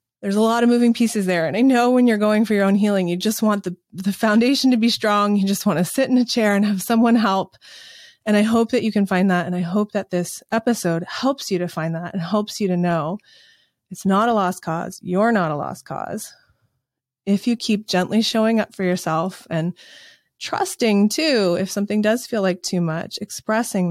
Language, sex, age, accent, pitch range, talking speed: English, female, 20-39, American, 180-230 Hz, 230 wpm